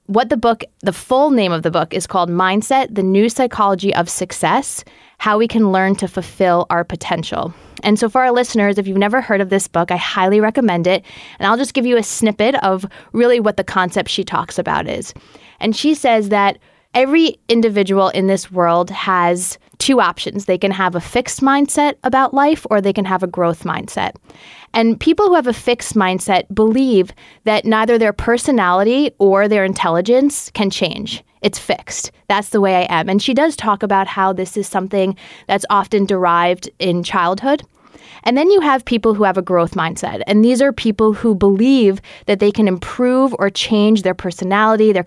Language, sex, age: English, female, 20-39